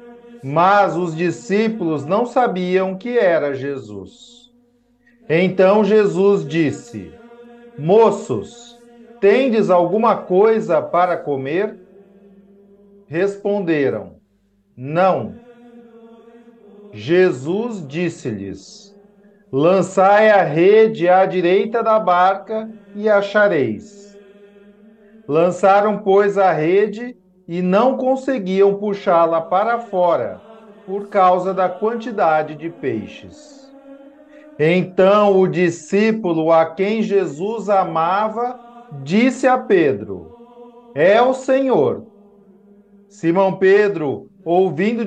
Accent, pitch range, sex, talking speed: Brazilian, 180-225 Hz, male, 85 wpm